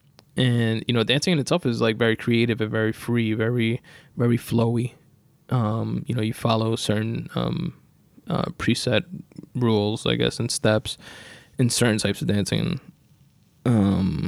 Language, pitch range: English, 115-145 Hz